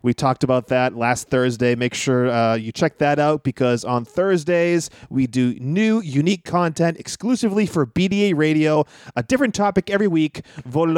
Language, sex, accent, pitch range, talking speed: English, male, American, 145-200 Hz, 170 wpm